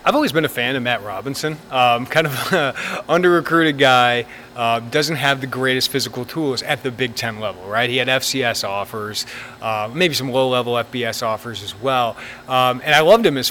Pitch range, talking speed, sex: 120-140 Hz, 200 wpm, male